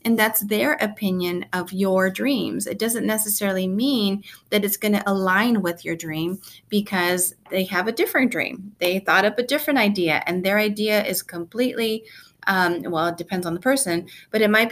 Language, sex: English, female